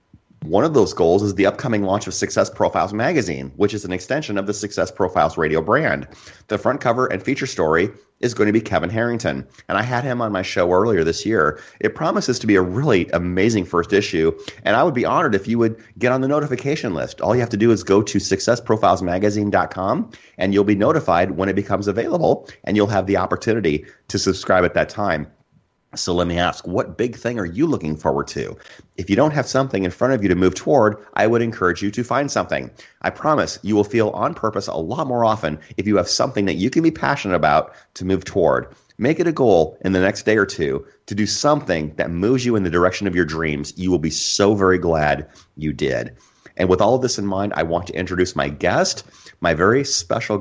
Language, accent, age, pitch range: English, American, 30-49, 90-115 Hz